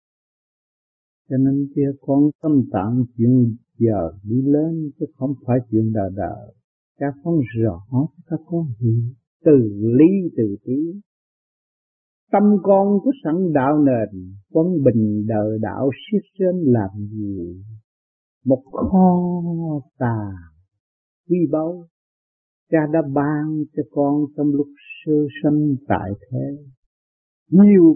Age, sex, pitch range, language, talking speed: 60-79, male, 110-165 Hz, Vietnamese, 120 wpm